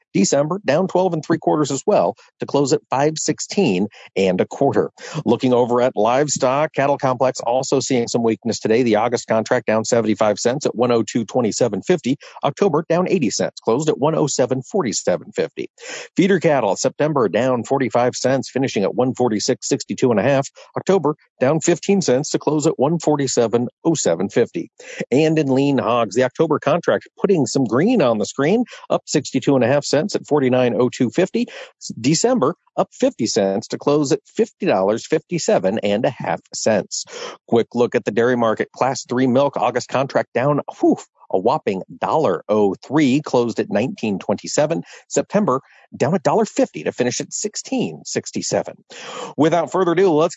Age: 50-69